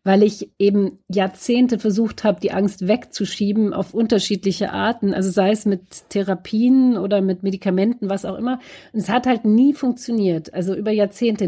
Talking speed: 165 wpm